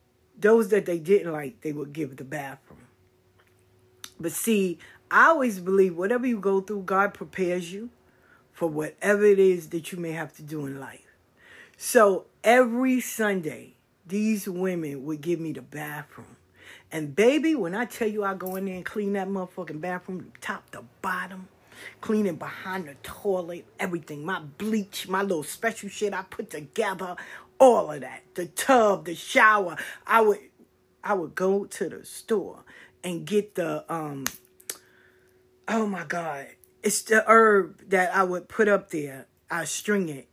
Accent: American